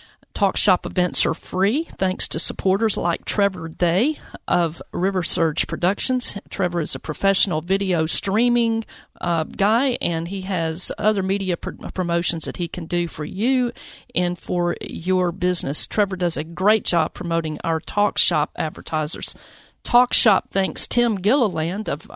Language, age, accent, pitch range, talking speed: English, 50-69, American, 170-215 Hz, 150 wpm